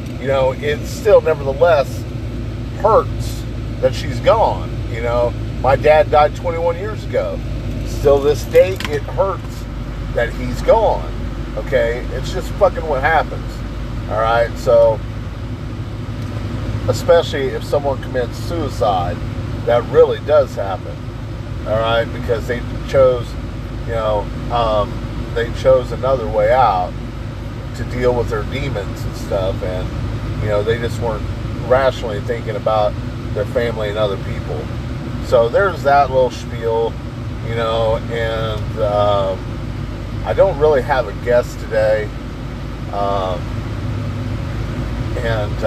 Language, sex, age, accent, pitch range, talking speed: English, male, 40-59, American, 115-125 Hz, 125 wpm